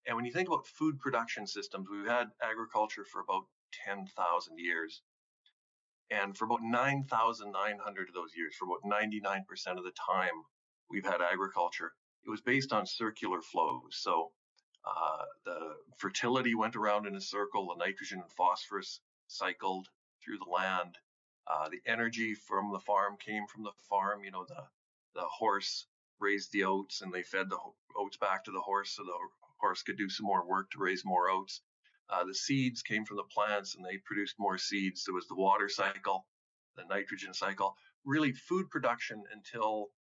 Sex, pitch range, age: male, 100-135 Hz, 40-59